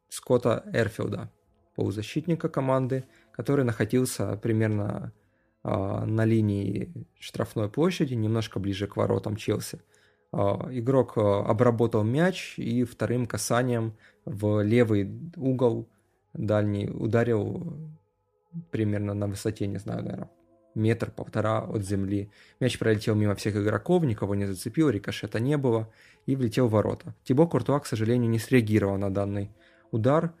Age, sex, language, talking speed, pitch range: 20-39, male, Russian, 120 wpm, 105-130 Hz